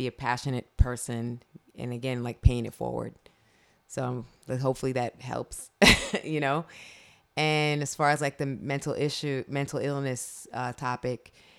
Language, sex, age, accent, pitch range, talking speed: English, female, 20-39, American, 125-145 Hz, 140 wpm